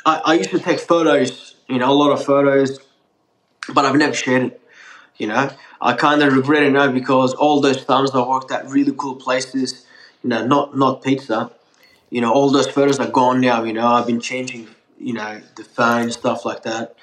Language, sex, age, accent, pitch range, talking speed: English, male, 20-39, Australian, 125-140 Hz, 210 wpm